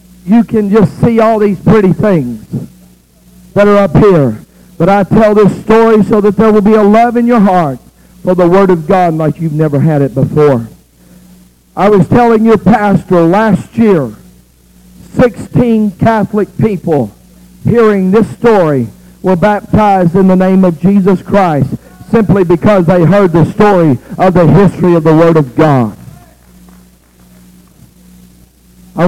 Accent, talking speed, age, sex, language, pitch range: American, 155 wpm, 50-69, male, English, 130-205 Hz